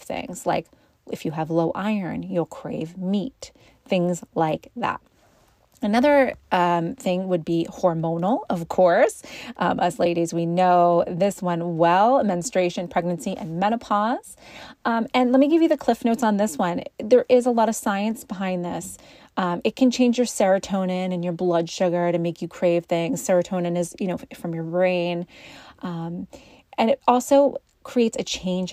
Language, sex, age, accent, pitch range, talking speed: English, female, 30-49, American, 175-220 Hz, 170 wpm